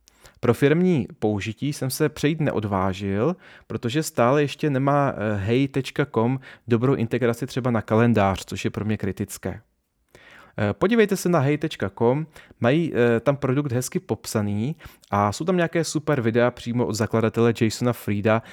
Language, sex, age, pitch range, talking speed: Czech, male, 30-49, 105-145 Hz, 135 wpm